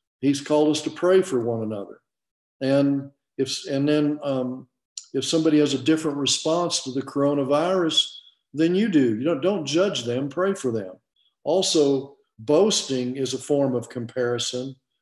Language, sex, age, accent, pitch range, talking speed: English, male, 50-69, American, 125-160 Hz, 160 wpm